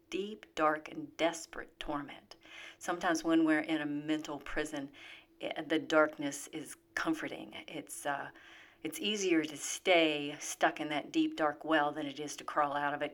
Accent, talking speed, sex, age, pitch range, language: American, 165 wpm, female, 40-59, 145-180 Hz, English